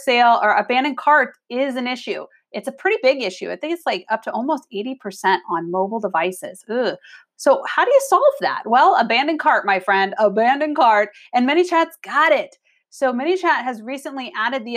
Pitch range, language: 205-265 Hz, English